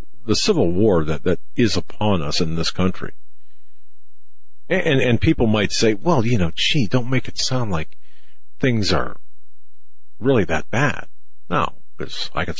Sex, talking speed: male, 165 wpm